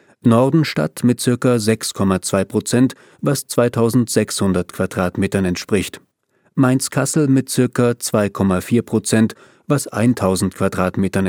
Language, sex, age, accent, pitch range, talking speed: German, male, 40-59, German, 100-130 Hz, 90 wpm